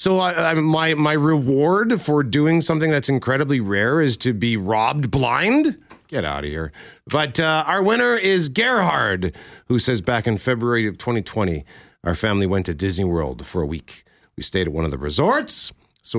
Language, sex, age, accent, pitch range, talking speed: English, male, 40-59, American, 95-150 Hz, 190 wpm